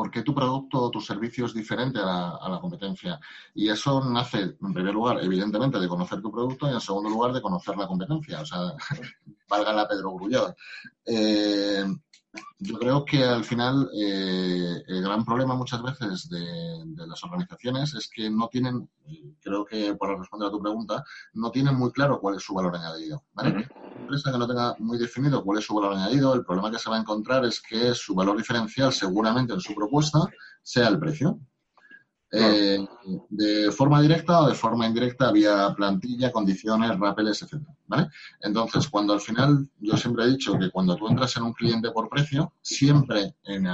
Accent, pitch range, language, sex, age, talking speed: Spanish, 105-140 Hz, Spanish, male, 30-49, 190 wpm